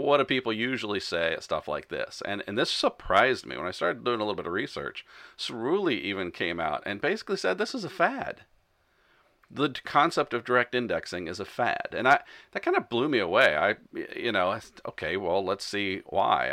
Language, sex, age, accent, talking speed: English, male, 40-59, American, 220 wpm